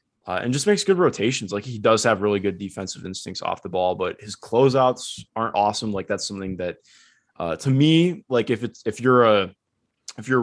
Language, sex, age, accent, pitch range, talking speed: English, male, 20-39, American, 95-115 Hz, 215 wpm